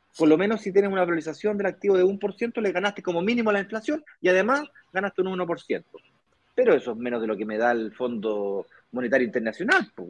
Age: 30-49